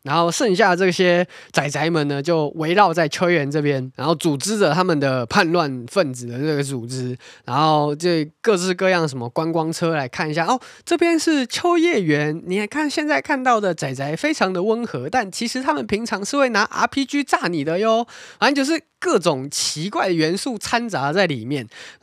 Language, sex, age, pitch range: Chinese, male, 20-39, 165-240 Hz